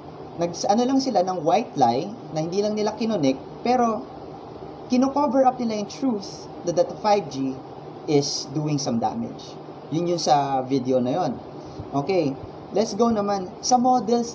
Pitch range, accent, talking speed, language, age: 140-235 Hz, native, 150 wpm, Filipino, 20-39